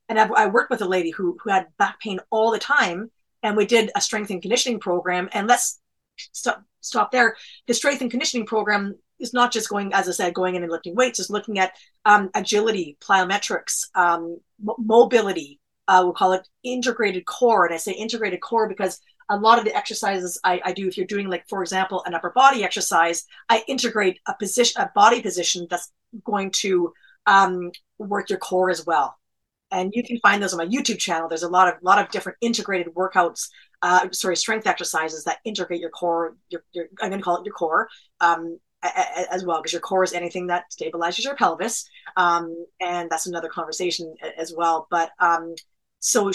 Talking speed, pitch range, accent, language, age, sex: 200 wpm, 175-220 Hz, American, English, 30-49, female